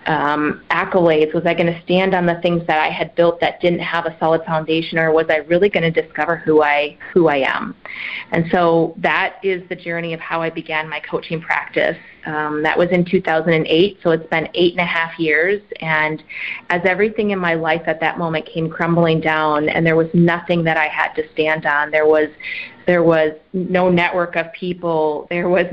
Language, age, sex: English, 30-49, female